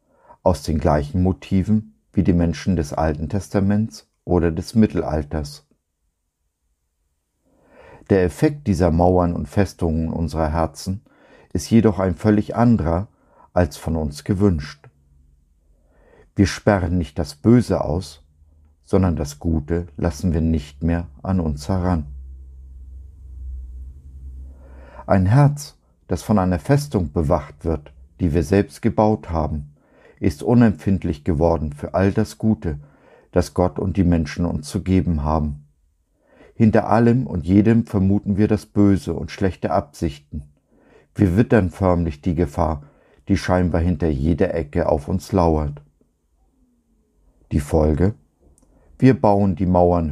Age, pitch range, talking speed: 50-69, 75-100 Hz, 125 wpm